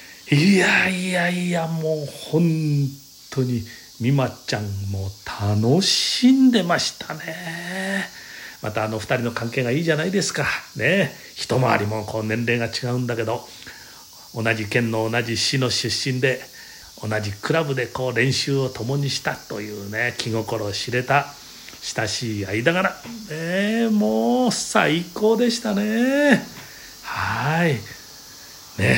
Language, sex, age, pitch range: Japanese, male, 40-59, 110-180 Hz